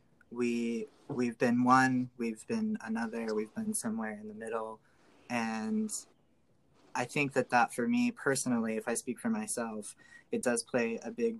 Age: 20-39